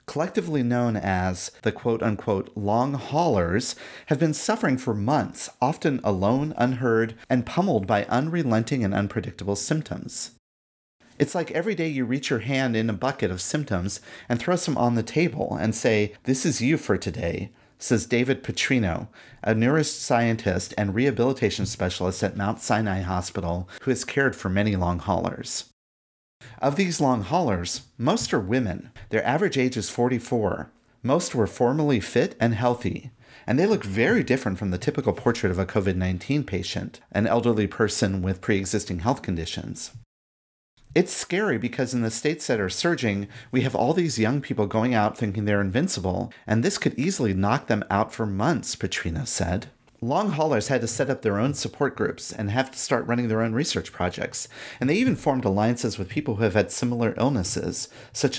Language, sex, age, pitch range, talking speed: English, male, 30-49, 100-130 Hz, 170 wpm